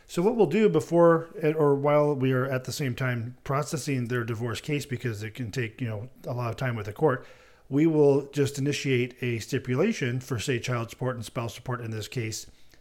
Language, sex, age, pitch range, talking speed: English, male, 40-59, 120-145 Hz, 215 wpm